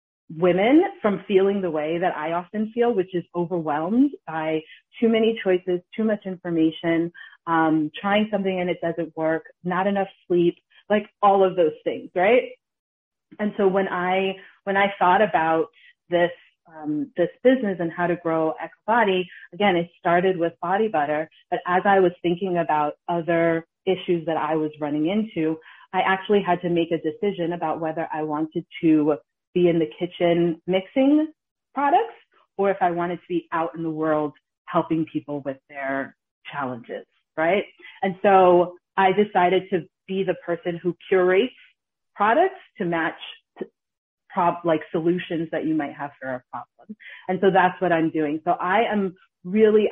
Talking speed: 170 wpm